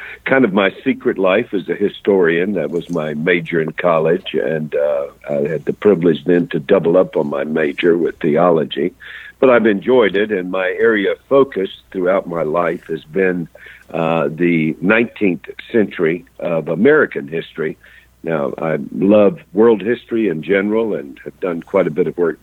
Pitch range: 80-110 Hz